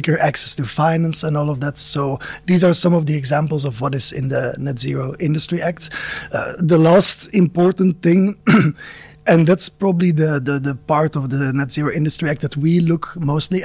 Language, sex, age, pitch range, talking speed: English, male, 20-39, 140-165 Hz, 200 wpm